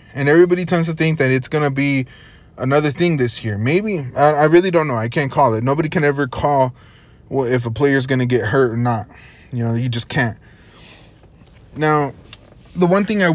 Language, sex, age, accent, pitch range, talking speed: English, male, 20-39, American, 130-165 Hz, 215 wpm